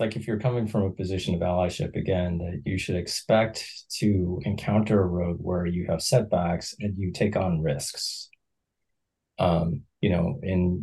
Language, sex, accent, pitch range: English, male, American, 85-100 Hz